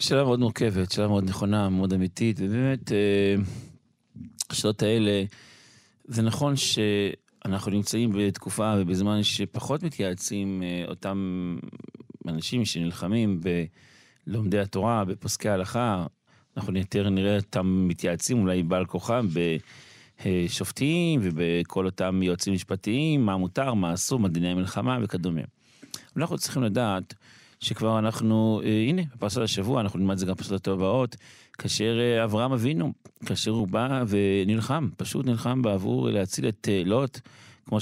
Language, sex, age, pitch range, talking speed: Hebrew, male, 30-49, 95-120 Hz, 125 wpm